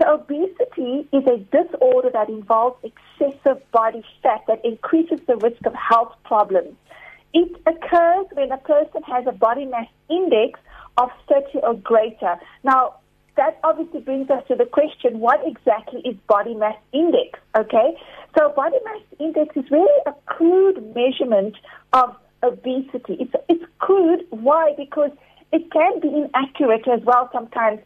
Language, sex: English, female